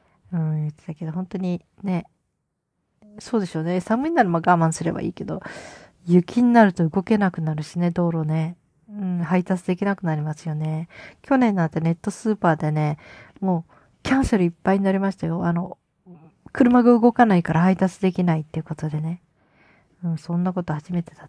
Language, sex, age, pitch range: Japanese, female, 40-59, 160-195 Hz